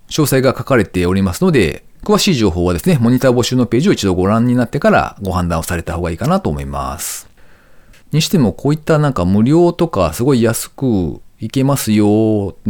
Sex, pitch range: male, 90-150 Hz